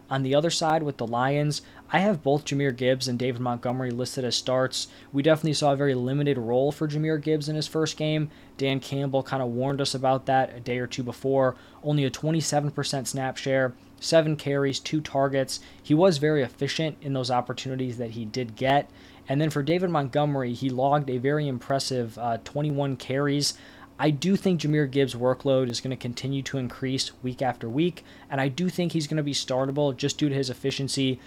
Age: 20-39